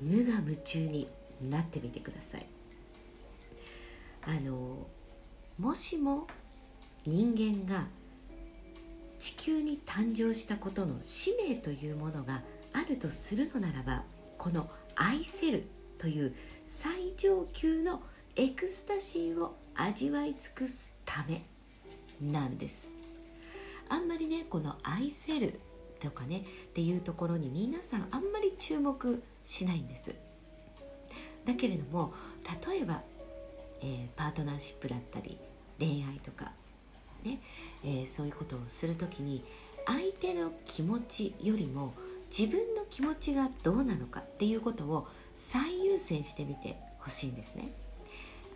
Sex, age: female, 60-79